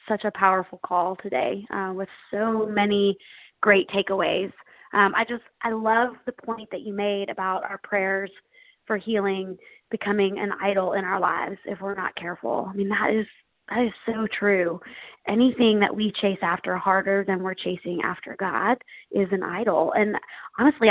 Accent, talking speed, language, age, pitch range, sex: American, 180 wpm, English, 20-39, 195-220 Hz, female